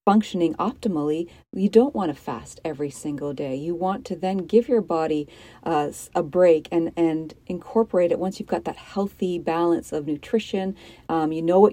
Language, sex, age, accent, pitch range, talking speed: English, female, 40-59, American, 160-195 Hz, 185 wpm